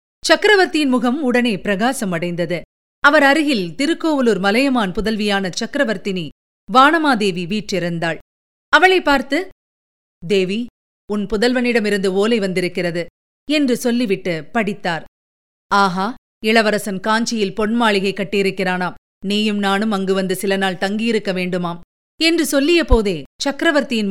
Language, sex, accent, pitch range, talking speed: Tamil, female, native, 195-230 Hz, 95 wpm